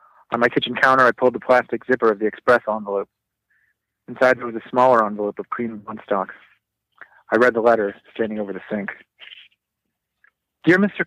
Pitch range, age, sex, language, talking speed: 115-135 Hz, 30-49, male, English, 180 wpm